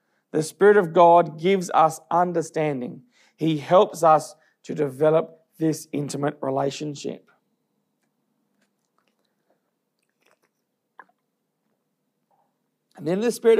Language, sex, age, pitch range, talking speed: English, male, 40-59, 155-210 Hz, 85 wpm